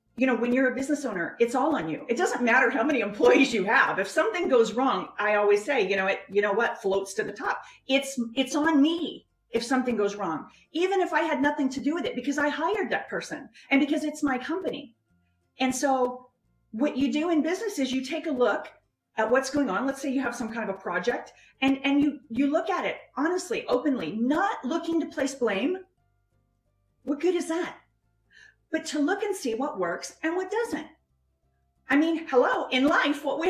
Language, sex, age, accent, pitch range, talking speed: English, female, 40-59, American, 230-315 Hz, 220 wpm